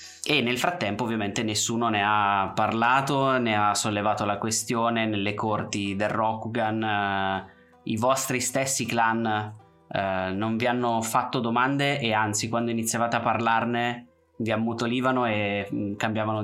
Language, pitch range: Italian, 105-120 Hz